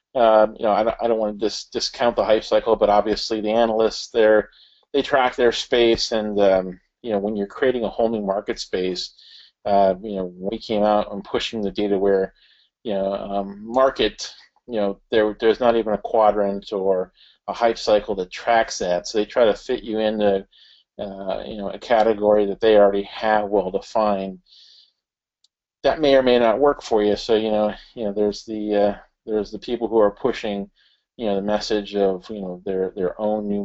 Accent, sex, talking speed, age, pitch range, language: American, male, 200 wpm, 40-59, 95-110 Hz, English